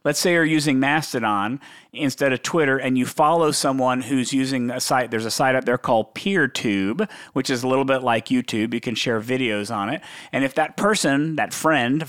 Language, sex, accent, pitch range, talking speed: English, male, American, 125-160 Hz, 210 wpm